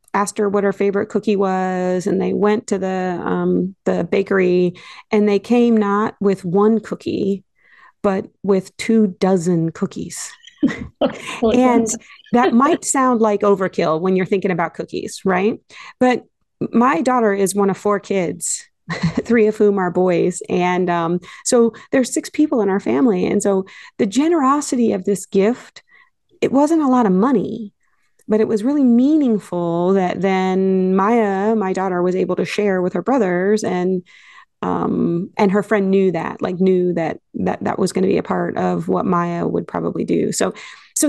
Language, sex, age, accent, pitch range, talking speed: English, female, 40-59, American, 185-225 Hz, 170 wpm